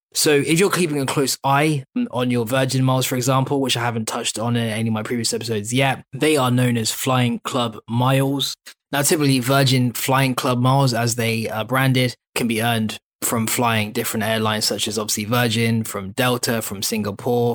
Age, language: 20-39, English